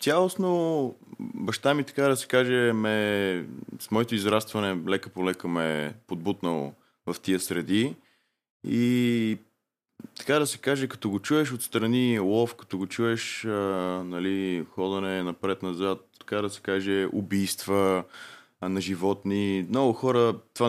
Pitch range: 90-115 Hz